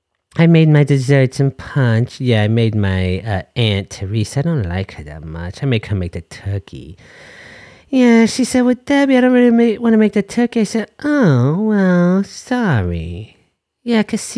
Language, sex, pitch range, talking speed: English, male, 125-205 Hz, 190 wpm